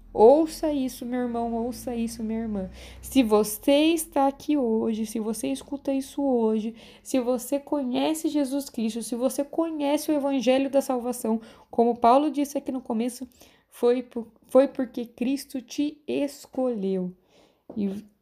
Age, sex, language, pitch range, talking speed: 20-39, female, Portuguese, 240-290 Hz, 140 wpm